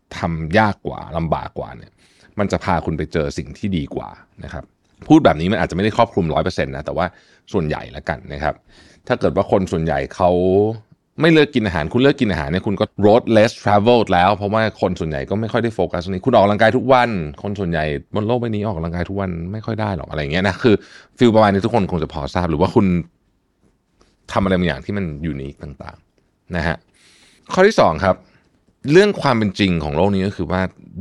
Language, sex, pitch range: Thai, male, 85-110 Hz